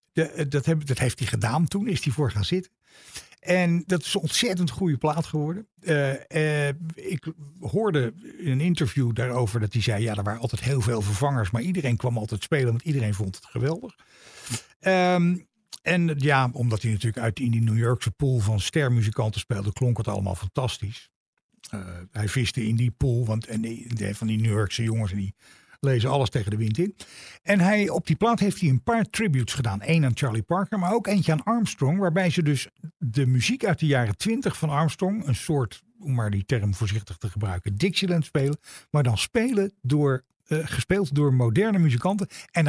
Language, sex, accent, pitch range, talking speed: Dutch, male, Dutch, 120-170 Hz, 200 wpm